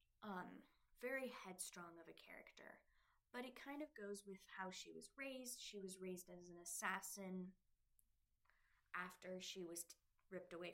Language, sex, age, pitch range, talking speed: English, female, 10-29, 175-240 Hz, 155 wpm